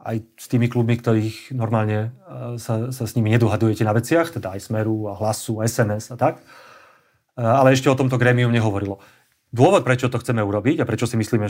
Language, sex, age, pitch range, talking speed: Slovak, male, 30-49, 110-130 Hz, 190 wpm